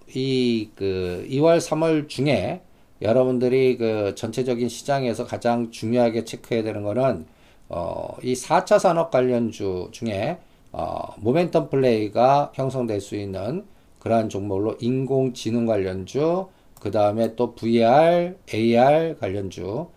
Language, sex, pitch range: Korean, male, 110-150 Hz